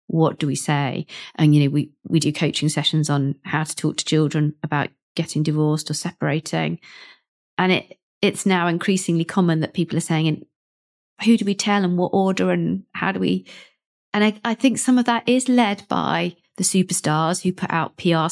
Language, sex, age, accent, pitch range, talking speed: English, female, 40-59, British, 160-190 Hz, 200 wpm